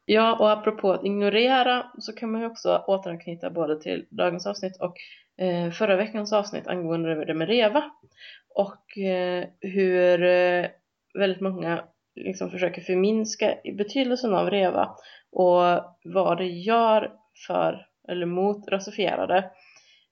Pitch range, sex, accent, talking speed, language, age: 175-205 Hz, female, Swedish, 120 wpm, English, 20-39